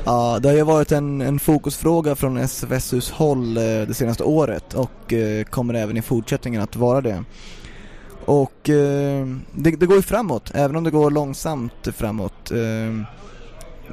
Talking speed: 165 wpm